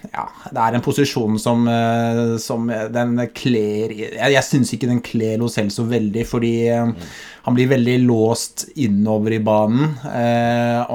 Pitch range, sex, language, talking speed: 110-125 Hz, male, English, 150 wpm